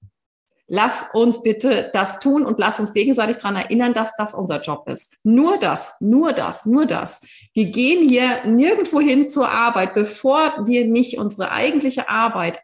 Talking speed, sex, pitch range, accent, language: 165 wpm, female, 190-255 Hz, German, German